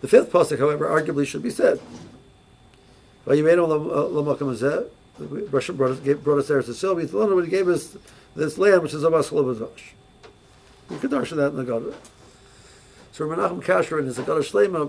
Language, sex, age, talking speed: English, male, 60-79, 175 wpm